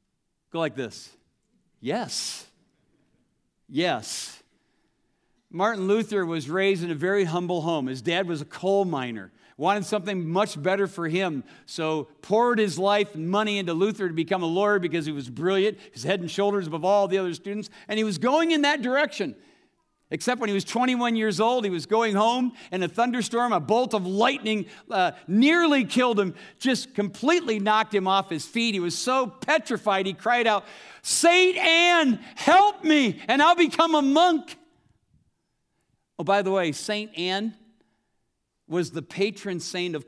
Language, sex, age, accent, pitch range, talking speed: English, male, 50-69, American, 180-240 Hz, 170 wpm